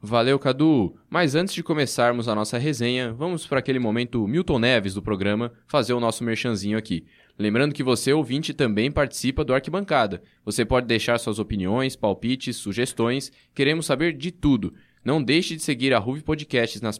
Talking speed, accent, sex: 175 wpm, Brazilian, male